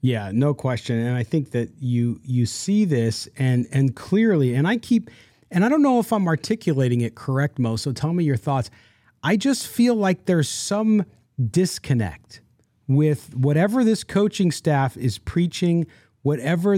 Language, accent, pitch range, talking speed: English, American, 130-180 Hz, 170 wpm